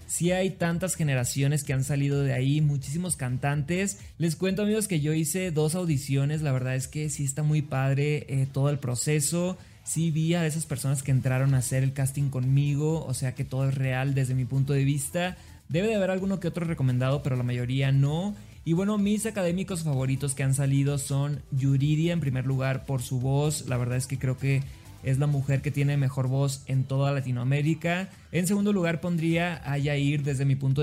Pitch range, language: 135-160 Hz, Spanish